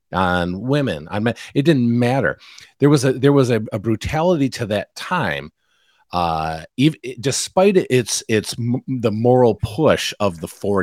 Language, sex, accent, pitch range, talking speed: English, male, American, 95-135 Hz, 175 wpm